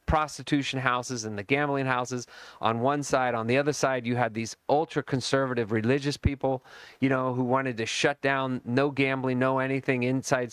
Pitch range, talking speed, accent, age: 115-135 Hz, 175 wpm, American, 40-59